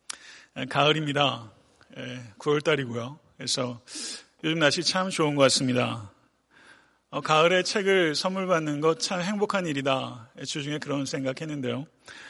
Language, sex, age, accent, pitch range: Korean, male, 40-59, native, 135-160 Hz